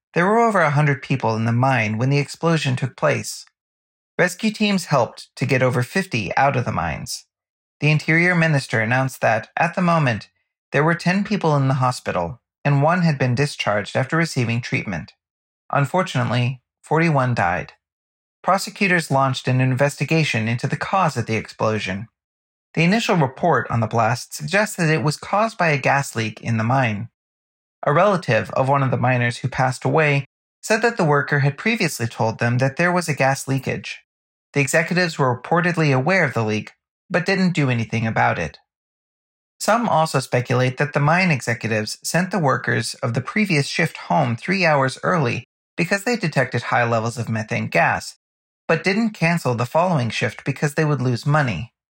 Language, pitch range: English, 120-165 Hz